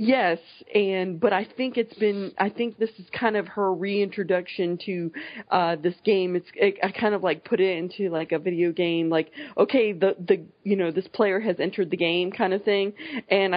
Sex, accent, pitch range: female, American, 175-205 Hz